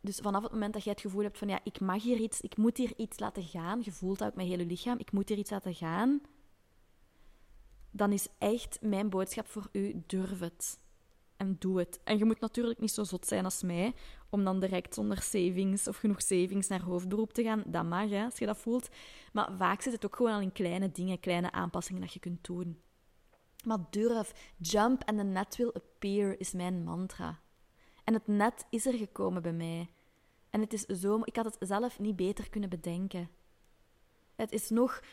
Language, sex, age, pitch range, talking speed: Dutch, female, 20-39, 185-225 Hz, 215 wpm